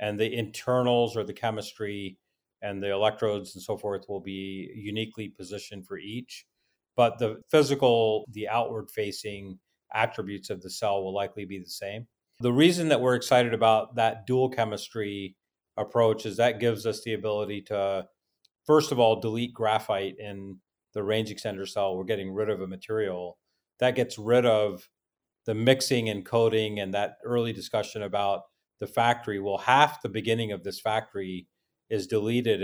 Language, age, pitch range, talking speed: English, 40-59, 100-115 Hz, 165 wpm